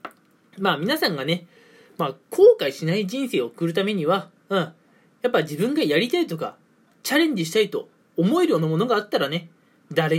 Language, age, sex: Japanese, 20-39, male